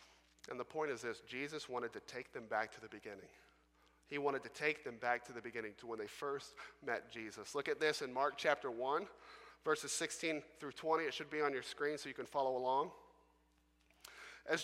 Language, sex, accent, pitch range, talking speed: English, male, American, 140-180 Hz, 215 wpm